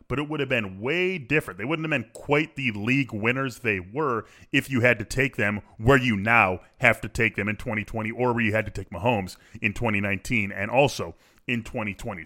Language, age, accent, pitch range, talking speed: English, 20-39, American, 105-130 Hz, 220 wpm